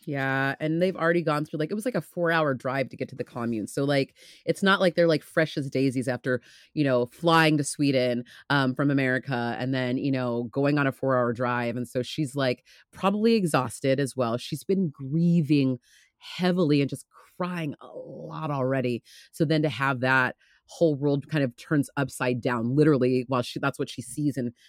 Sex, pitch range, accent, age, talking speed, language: female, 125-165 Hz, American, 30-49, 210 wpm, English